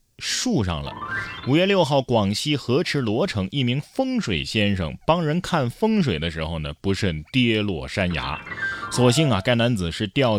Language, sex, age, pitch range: Chinese, male, 20-39, 95-130 Hz